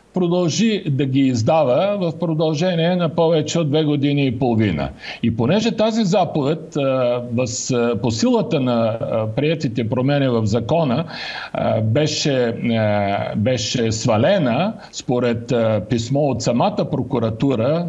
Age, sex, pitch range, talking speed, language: 50-69, male, 120-180 Hz, 120 wpm, Bulgarian